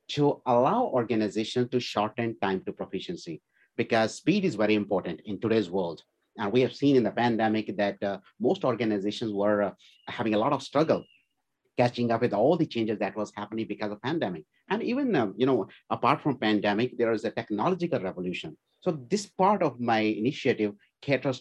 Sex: male